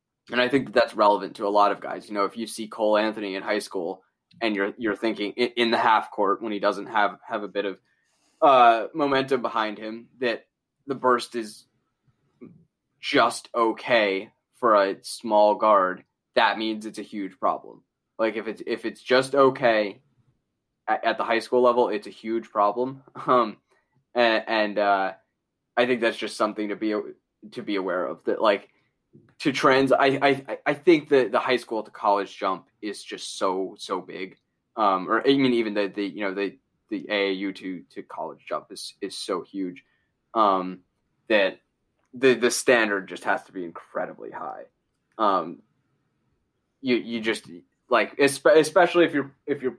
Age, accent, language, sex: 10-29, American, English, male